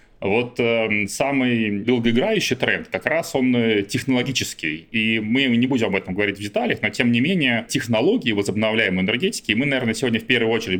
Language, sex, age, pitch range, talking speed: Russian, male, 30-49, 95-115 Hz, 180 wpm